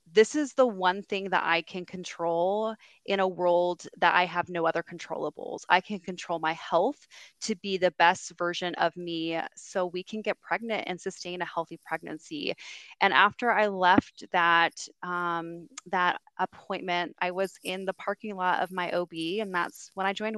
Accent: American